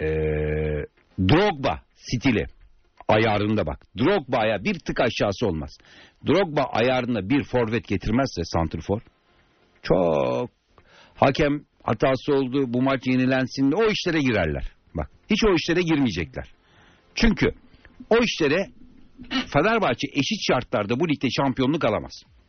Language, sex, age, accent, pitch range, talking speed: Turkish, male, 60-79, native, 90-140 Hz, 110 wpm